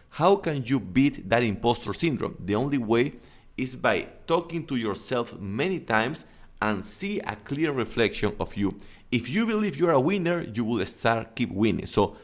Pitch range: 110-155 Hz